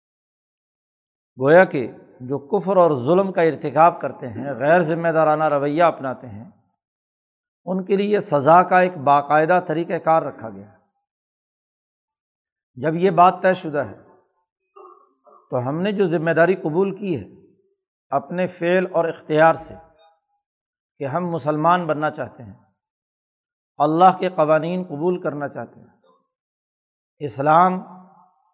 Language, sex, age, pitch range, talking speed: Urdu, male, 60-79, 150-195 Hz, 130 wpm